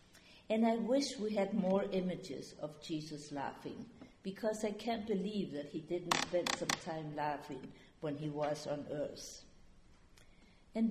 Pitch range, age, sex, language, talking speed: 170-215 Hz, 50-69, female, English, 150 wpm